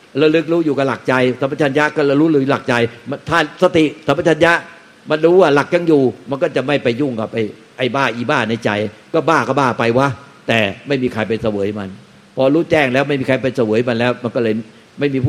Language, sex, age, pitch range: Thai, male, 60-79, 115-140 Hz